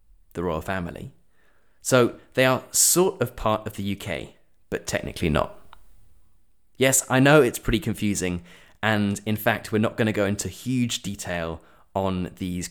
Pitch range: 90-115 Hz